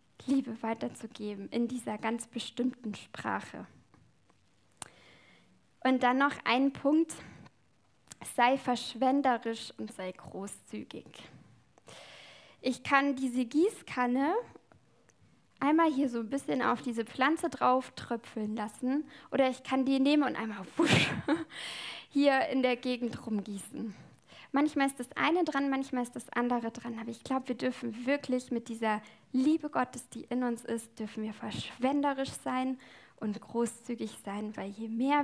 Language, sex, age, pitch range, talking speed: German, female, 10-29, 225-265 Hz, 135 wpm